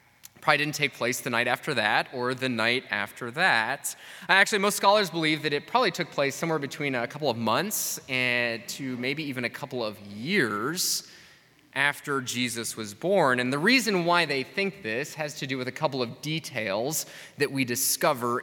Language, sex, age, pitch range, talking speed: English, male, 20-39, 120-160 Hz, 190 wpm